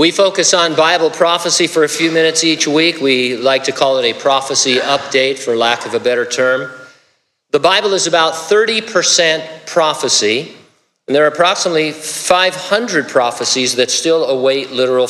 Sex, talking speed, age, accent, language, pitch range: male, 165 wpm, 50-69, American, English, 130-175 Hz